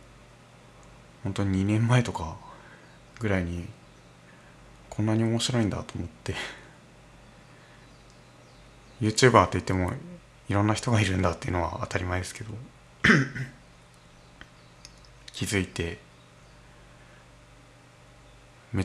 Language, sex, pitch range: Japanese, male, 95-120 Hz